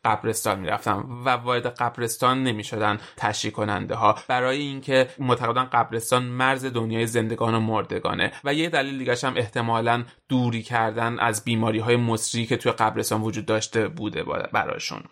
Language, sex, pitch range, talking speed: Persian, male, 110-130 Hz, 145 wpm